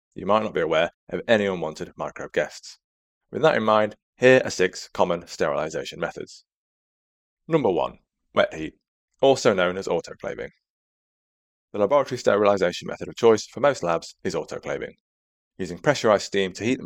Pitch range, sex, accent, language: 85-115 Hz, male, British, English